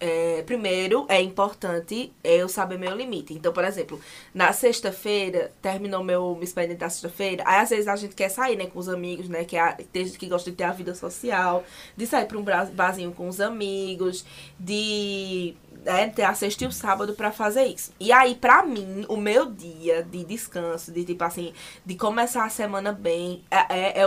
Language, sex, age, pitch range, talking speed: Portuguese, female, 20-39, 180-245 Hz, 200 wpm